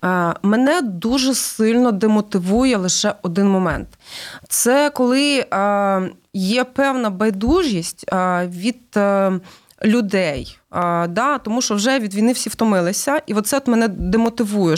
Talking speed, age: 125 wpm, 20-39